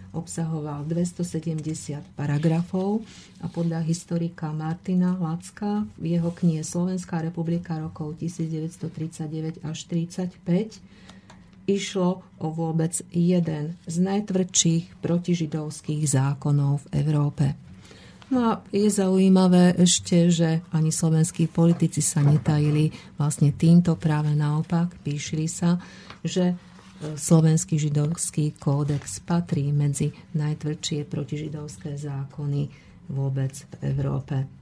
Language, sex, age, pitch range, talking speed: Slovak, female, 50-69, 150-175 Hz, 95 wpm